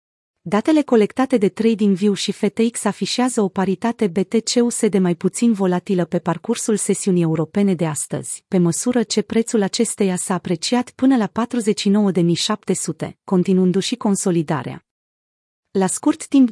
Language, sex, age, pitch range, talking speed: Romanian, female, 30-49, 180-230 Hz, 130 wpm